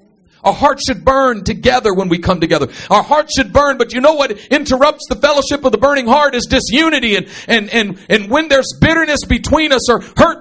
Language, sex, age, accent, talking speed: English, male, 50-69, American, 200 wpm